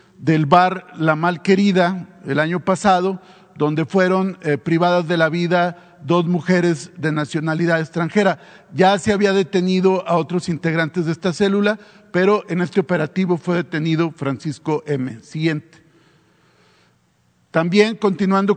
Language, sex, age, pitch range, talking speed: Spanish, male, 50-69, 160-190 Hz, 130 wpm